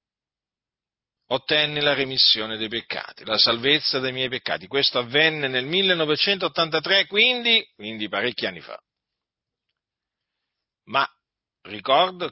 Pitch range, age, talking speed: 120-170 Hz, 40-59, 100 wpm